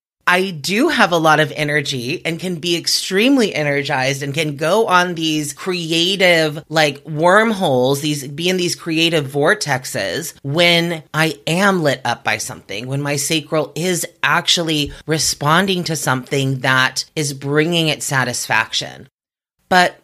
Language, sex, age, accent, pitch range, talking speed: English, female, 30-49, American, 145-185 Hz, 140 wpm